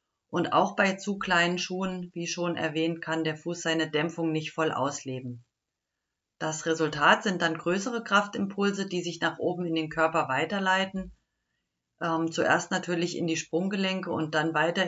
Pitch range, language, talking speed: 160-200 Hz, German, 160 wpm